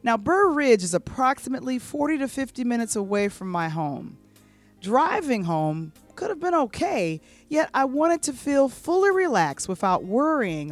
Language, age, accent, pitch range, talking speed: English, 40-59, American, 170-270 Hz, 155 wpm